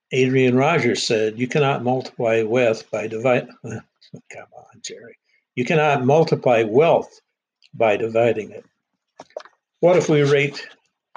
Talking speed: 125 wpm